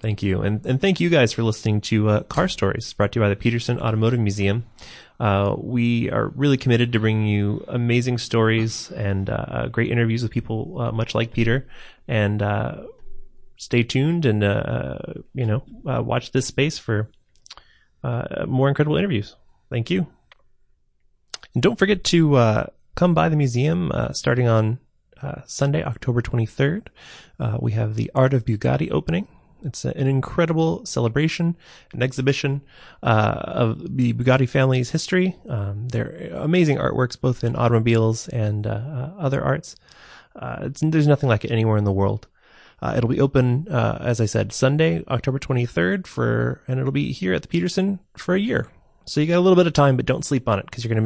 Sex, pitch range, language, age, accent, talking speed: male, 110-140 Hz, English, 20-39, American, 185 wpm